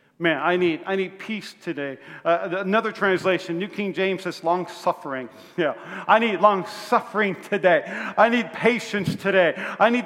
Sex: male